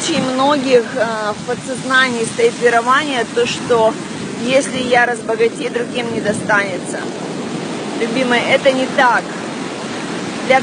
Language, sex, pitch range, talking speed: Russian, female, 225-255 Hz, 105 wpm